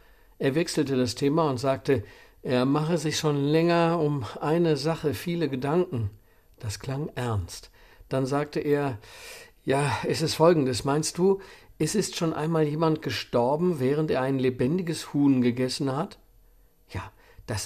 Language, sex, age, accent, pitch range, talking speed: German, male, 50-69, German, 125-155 Hz, 145 wpm